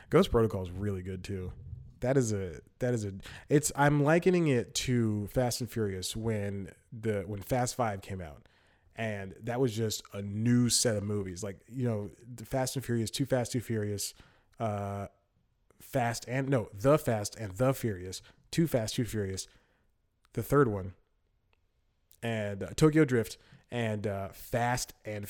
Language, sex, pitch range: English, male, 100-130 Hz